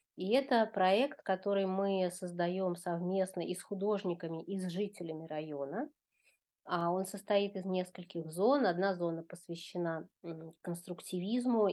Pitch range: 170-205 Hz